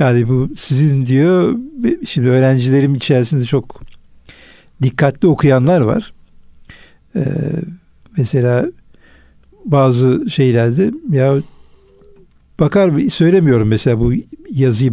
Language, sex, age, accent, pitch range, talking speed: Turkish, male, 60-79, native, 125-180 Hz, 90 wpm